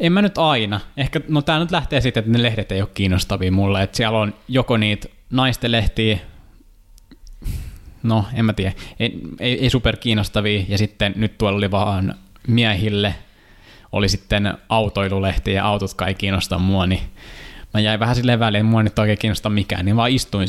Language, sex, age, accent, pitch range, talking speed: Finnish, male, 20-39, native, 95-115 Hz, 185 wpm